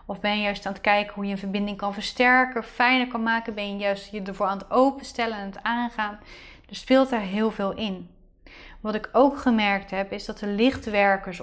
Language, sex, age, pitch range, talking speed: Dutch, female, 30-49, 195-220 Hz, 225 wpm